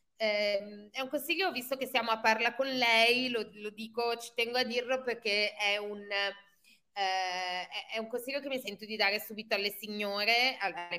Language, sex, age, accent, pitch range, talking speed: Italian, female, 20-39, native, 195-235 Hz, 190 wpm